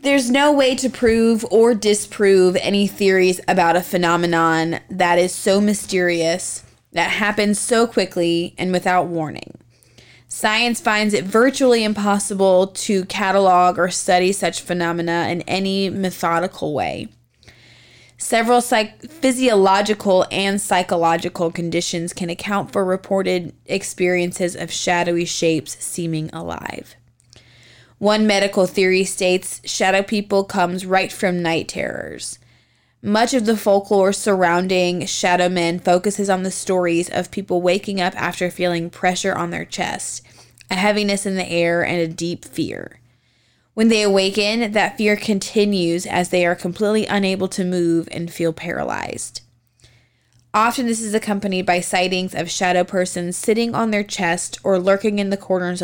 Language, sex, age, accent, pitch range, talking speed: English, female, 20-39, American, 170-205 Hz, 140 wpm